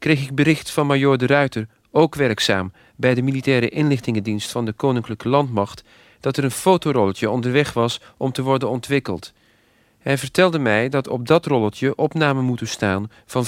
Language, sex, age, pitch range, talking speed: Dutch, male, 40-59, 115-145 Hz, 170 wpm